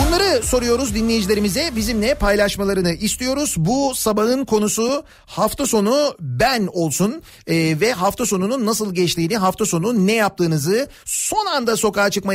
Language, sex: Turkish, male